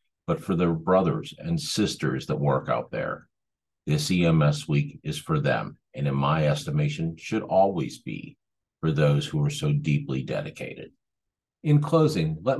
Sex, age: male, 50-69